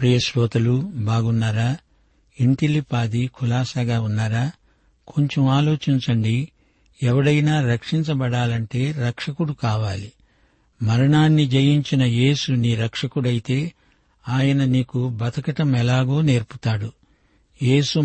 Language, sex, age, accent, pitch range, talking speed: Telugu, male, 60-79, native, 120-145 Hz, 75 wpm